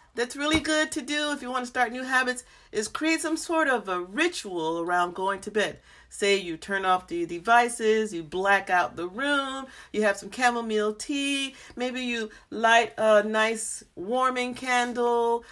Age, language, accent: 40-59, English, American